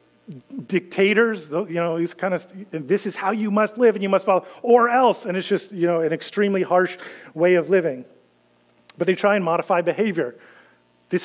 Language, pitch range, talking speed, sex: English, 170-205 Hz, 190 wpm, male